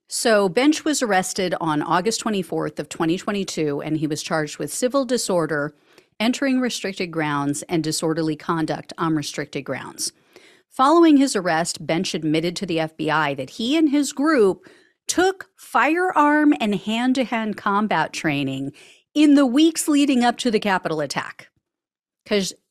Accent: American